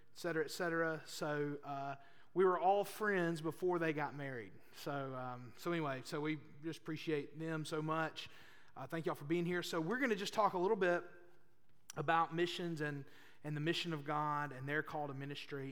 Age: 30-49